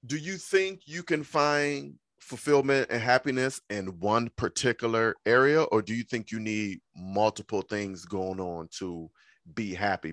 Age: 30-49